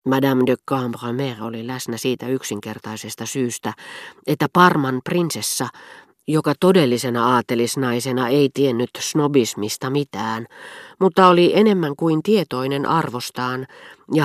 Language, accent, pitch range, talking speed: Finnish, native, 115-145 Hz, 105 wpm